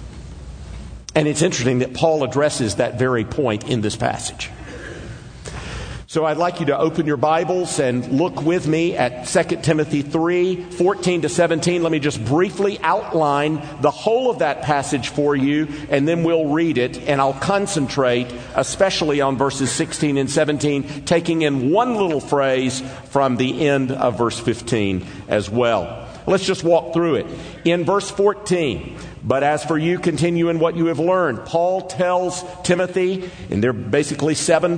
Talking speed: 165 wpm